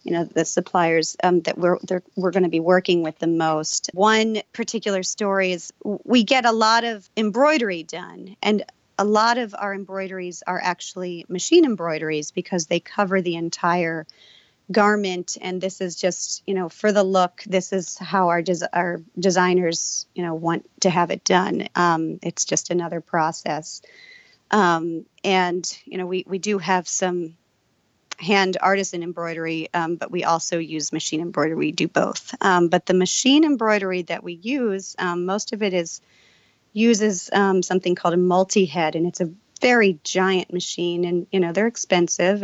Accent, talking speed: American, 175 wpm